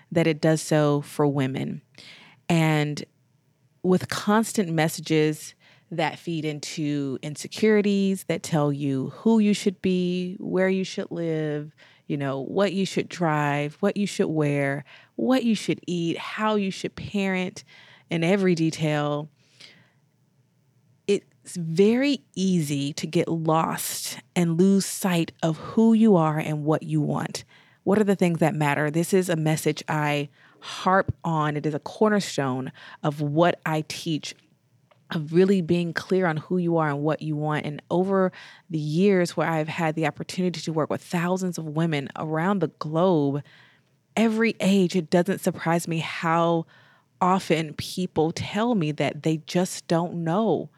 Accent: American